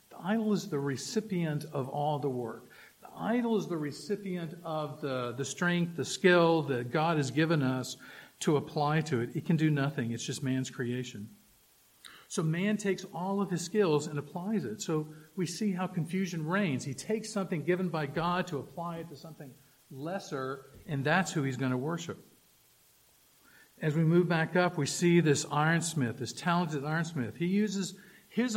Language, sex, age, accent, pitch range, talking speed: English, male, 50-69, American, 135-180 Hz, 180 wpm